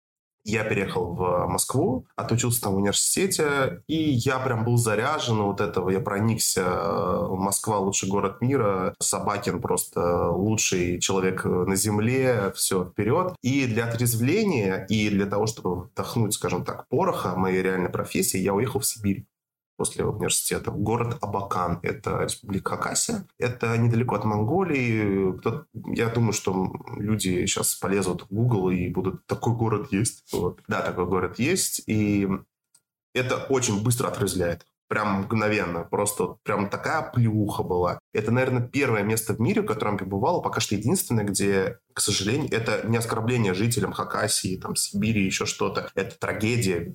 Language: Russian